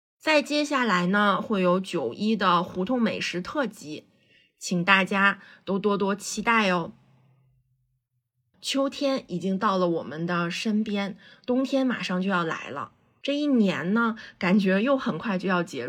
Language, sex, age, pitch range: Chinese, female, 20-39, 180-230 Hz